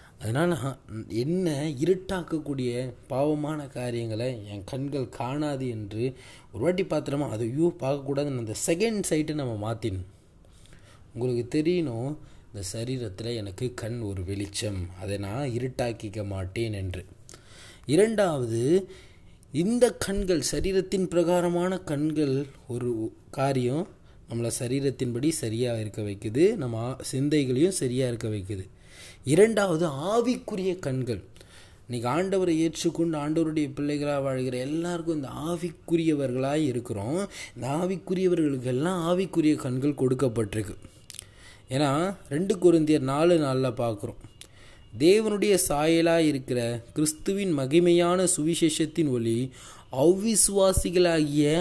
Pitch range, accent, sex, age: 115-170 Hz, native, male, 20-39